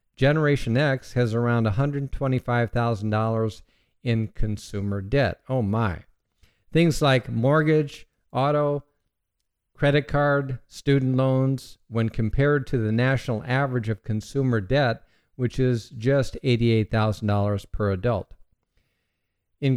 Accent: American